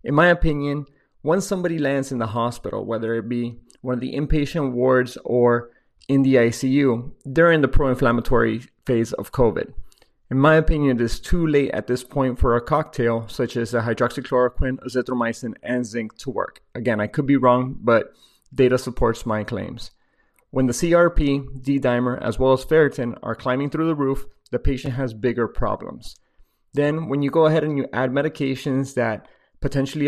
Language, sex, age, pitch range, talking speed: English, male, 30-49, 120-140 Hz, 175 wpm